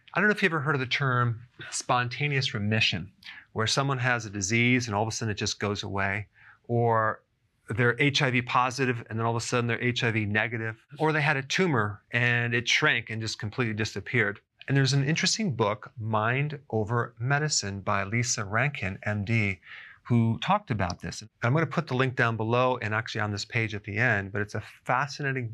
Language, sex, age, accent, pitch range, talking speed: English, male, 40-59, American, 110-135 Hz, 205 wpm